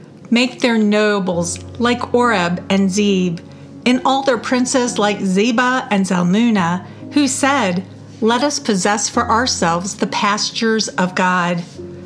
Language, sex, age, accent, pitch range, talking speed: English, female, 50-69, American, 185-240 Hz, 130 wpm